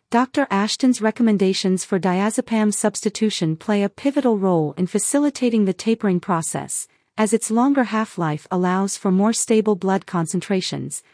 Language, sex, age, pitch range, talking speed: English, female, 40-59, 190-235 Hz, 135 wpm